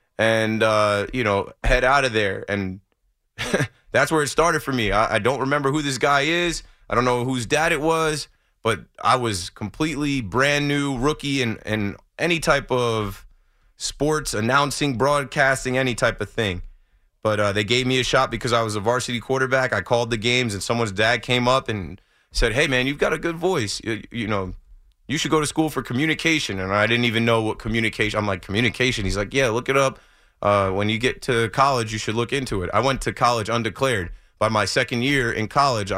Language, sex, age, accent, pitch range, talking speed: English, male, 20-39, American, 105-135 Hz, 210 wpm